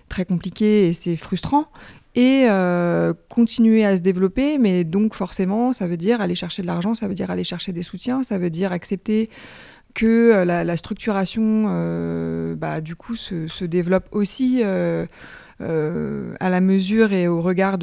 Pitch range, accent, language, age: 165-205 Hz, French, French, 30-49